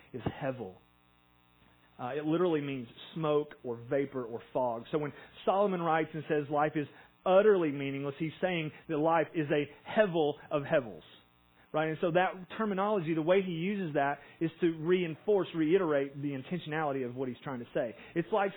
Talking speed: 175 wpm